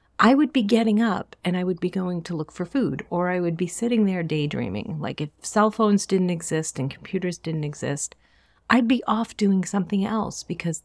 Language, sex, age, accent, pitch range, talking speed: English, female, 40-59, American, 140-190 Hz, 210 wpm